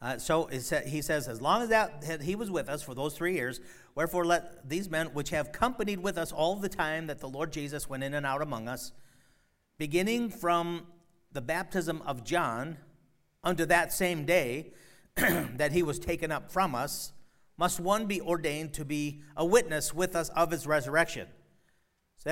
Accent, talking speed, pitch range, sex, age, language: American, 190 wpm, 135-175 Hz, male, 50-69, English